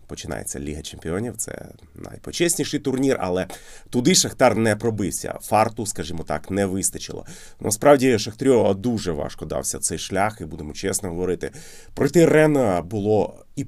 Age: 30-49